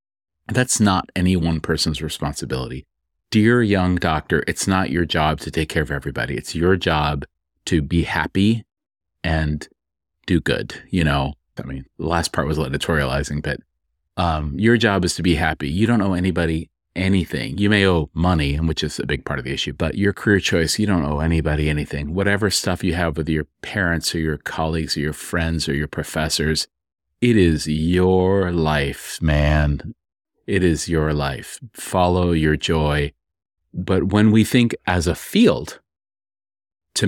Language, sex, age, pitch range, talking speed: English, male, 30-49, 80-95 Hz, 175 wpm